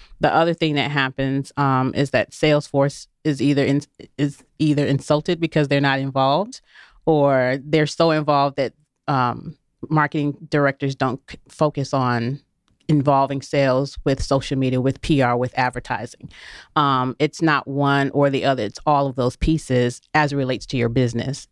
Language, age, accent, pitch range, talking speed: English, 30-49, American, 125-145 Hz, 160 wpm